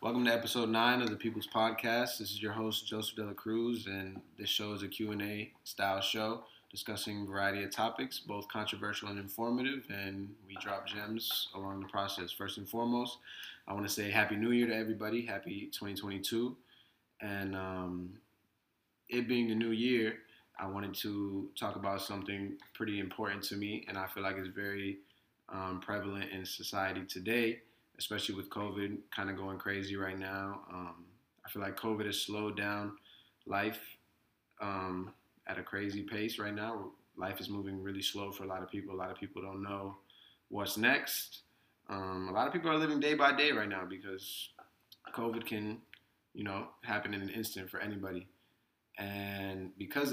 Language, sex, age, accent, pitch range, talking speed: English, male, 20-39, American, 100-110 Hz, 180 wpm